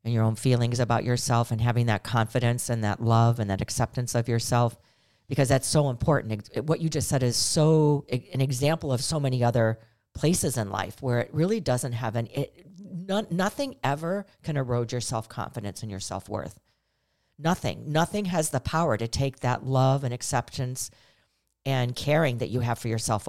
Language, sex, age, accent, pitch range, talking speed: English, female, 50-69, American, 115-150 Hz, 180 wpm